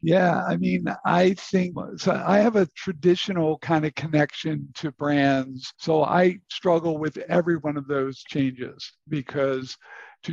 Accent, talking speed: American, 150 wpm